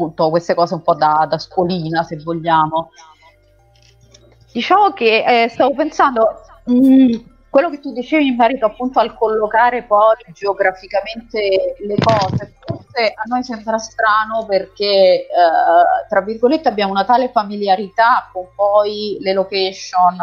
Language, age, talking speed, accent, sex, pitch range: Italian, 30-49, 135 wpm, native, female, 185-230 Hz